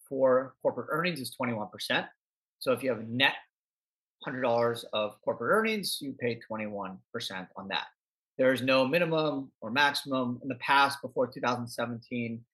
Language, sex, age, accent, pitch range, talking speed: English, male, 30-49, American, 120-195 Hz, 145 wpm